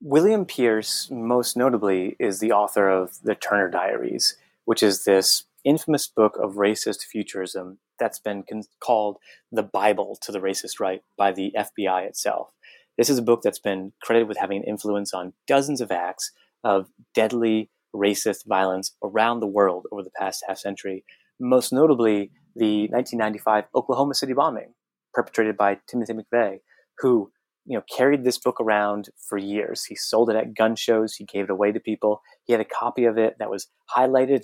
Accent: American